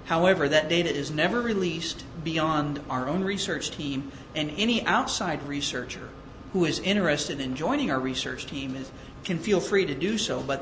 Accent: American